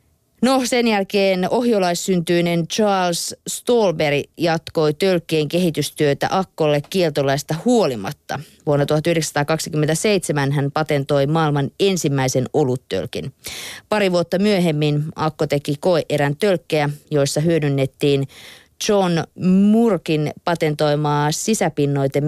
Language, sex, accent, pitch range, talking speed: Finnish, female, native, 145-180 Hz, 85 wpm